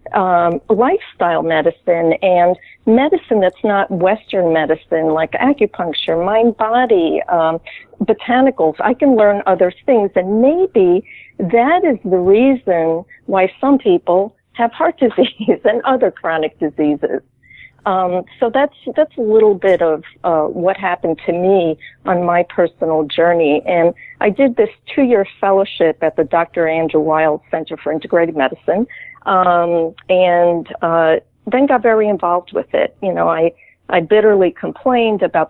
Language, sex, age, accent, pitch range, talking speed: English, female, 50-69, American, 165-220 Hz, 145 wpm